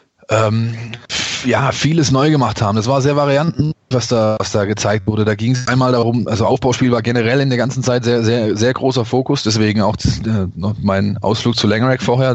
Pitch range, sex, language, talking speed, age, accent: 110-125 Hz, male, German, 210 wpm, 20-39, German